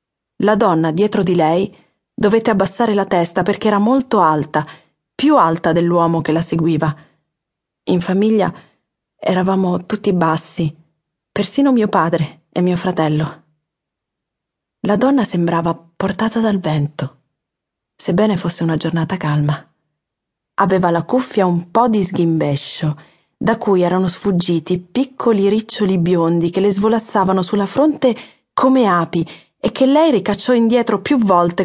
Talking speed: 130 wpm